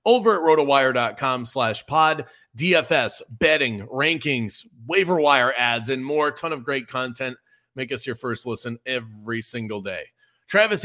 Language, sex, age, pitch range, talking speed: English, male, 30-49, 130-160 Hz, 140 wpm